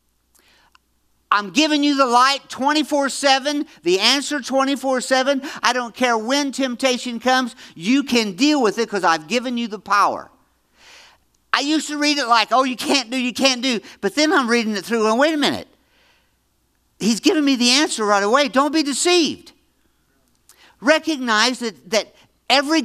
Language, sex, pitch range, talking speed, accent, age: English, male, 210-285 Hz, 165 wpm, American, 50-69